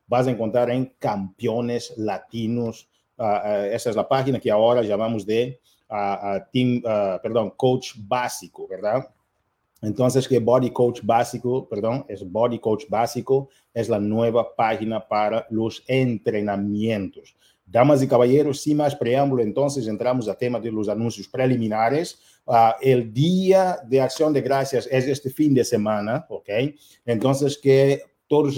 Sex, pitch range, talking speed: male, 115-140 Hz, 150 wpm